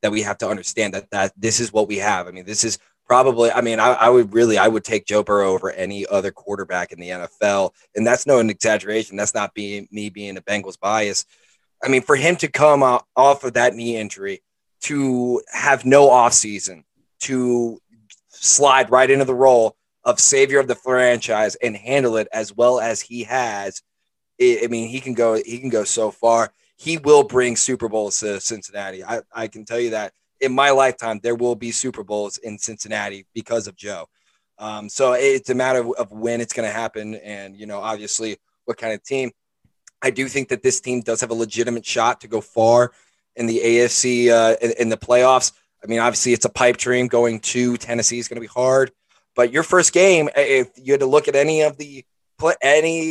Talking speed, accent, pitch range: 215 wpm, American, 110-130 Hz